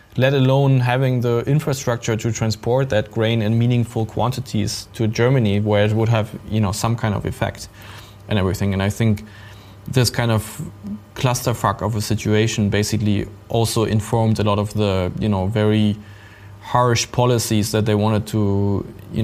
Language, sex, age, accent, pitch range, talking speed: English, male, 20-39, German, 100-115 Hz, 165 wpm